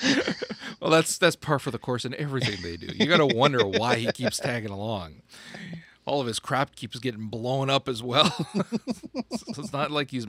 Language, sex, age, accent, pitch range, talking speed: English, male, 40-59, American, 95-125 Hz, 205 wpm